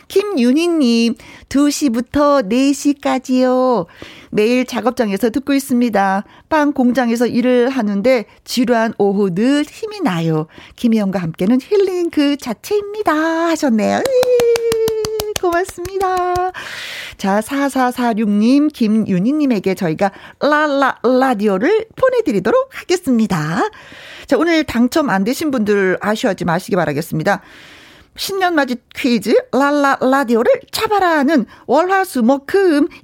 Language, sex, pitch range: Korean, female, 215-315 Hz